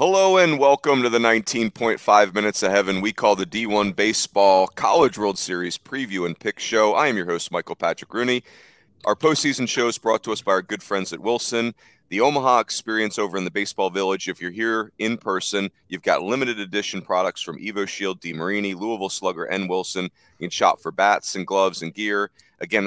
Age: 30-49